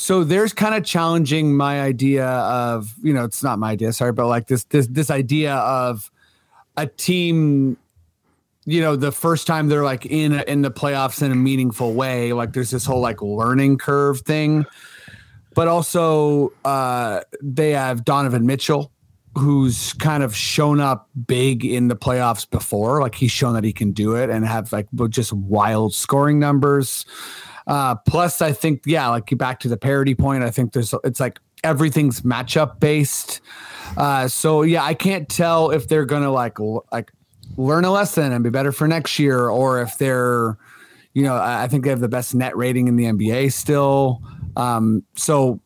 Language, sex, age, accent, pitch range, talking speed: English, male, 30-49, American, 120-150 Hz, 185 wpm